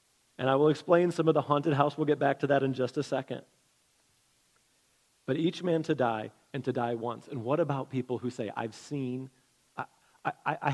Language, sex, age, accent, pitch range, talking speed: English, male, 30-49, American, 130-155 Hz, 210 wpm